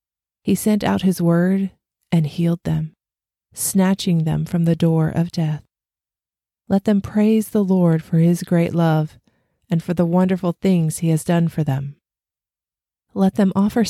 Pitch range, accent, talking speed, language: 155-185 Hz, American, 160 wpm, English